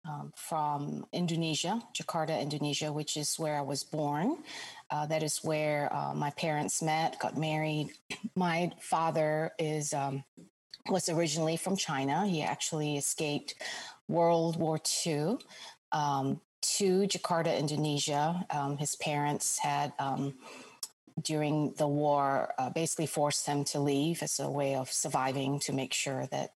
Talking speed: 140 wpm